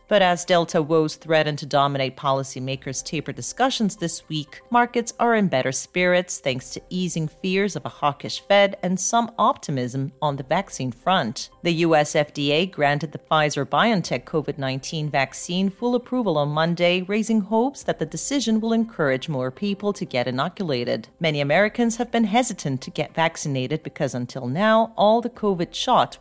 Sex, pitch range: female, 140-190 Hz